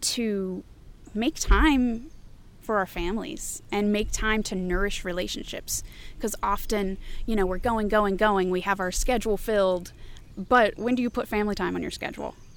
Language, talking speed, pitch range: English, 165 wpm, 185-215 Hz